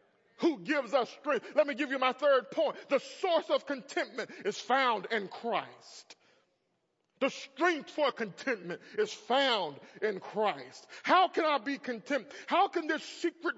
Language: English